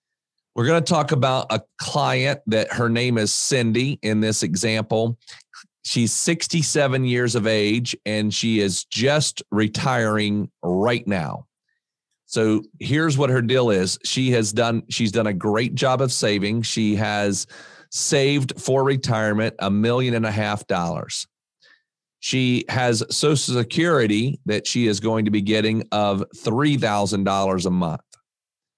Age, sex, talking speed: 40-59, male, 145 wpm